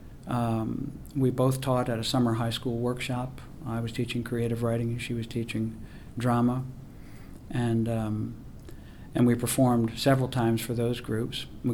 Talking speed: 160 wpm